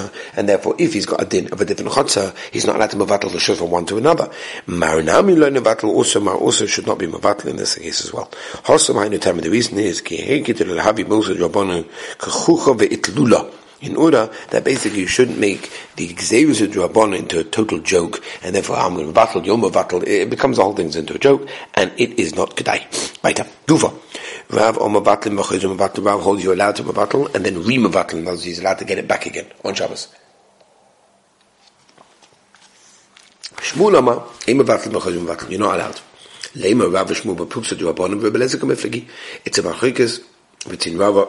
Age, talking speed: 60-79, 180 wpm